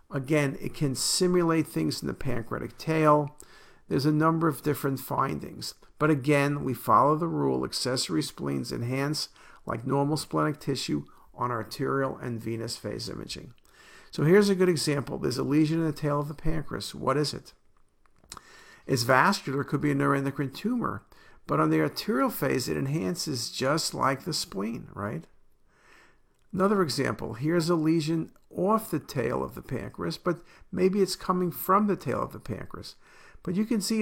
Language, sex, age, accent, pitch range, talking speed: English, male, 50-69, American, 130-165 Hz, 170 wpm